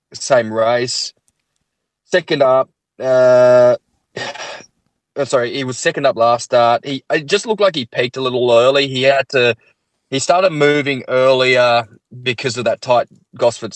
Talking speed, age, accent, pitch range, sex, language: 155 wpm, 20-39, Australian, 115-135 Hz, male, English